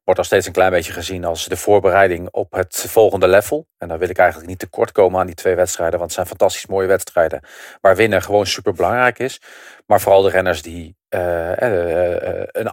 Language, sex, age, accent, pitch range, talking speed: English, male, 40-59, Dutch, 90-115 Hz, 210 wpm